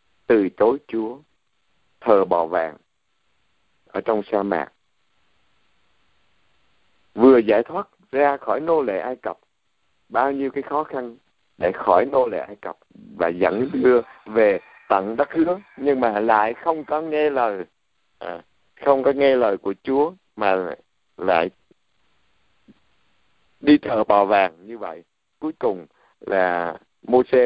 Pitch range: 95-135 Hz